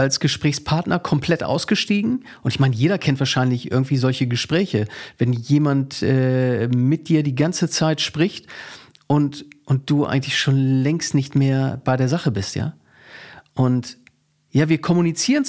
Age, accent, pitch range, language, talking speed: 40-59, German, 135-190 Hz, German, 150 wpm